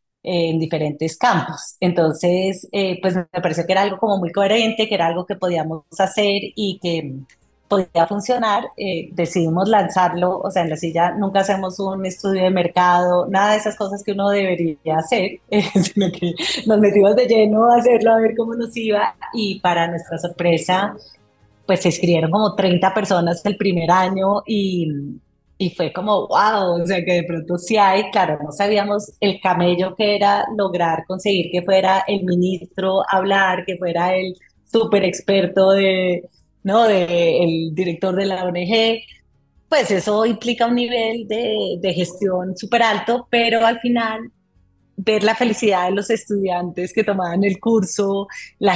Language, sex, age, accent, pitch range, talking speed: Spanish, female, 30-49, Colombian, 180-205 Hz, 165 wpm